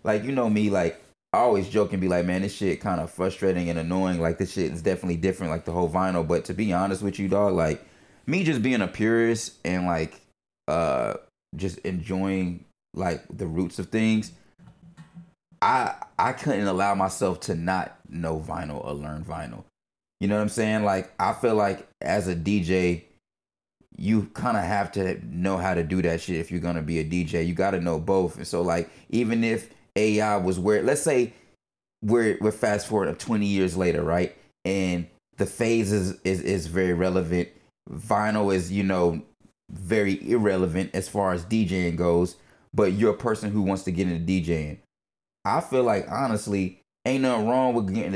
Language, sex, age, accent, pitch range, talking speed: English, male, 30-49, American, 85-105 Hz, 190 wpm